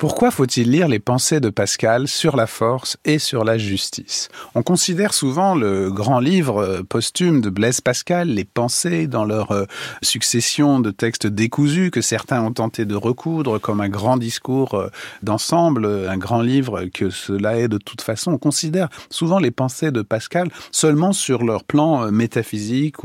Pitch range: 110-150 Hz